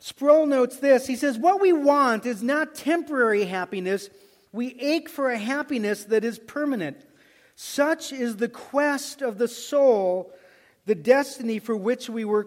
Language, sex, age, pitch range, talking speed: English, male, 40-59, 230-295 Hz, 160 wpm